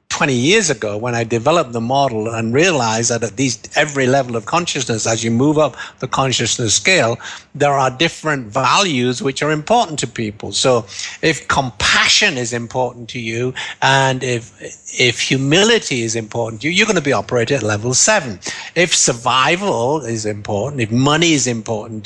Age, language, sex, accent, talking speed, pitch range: 60-79, English, male, British, 175 wpm, 115-150 Hz